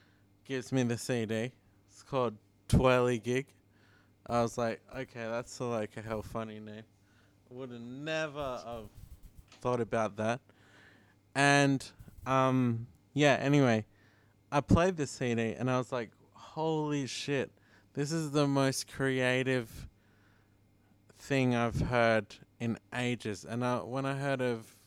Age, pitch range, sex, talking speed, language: 20-39, 105-125 Hz, male, 140 wpm, English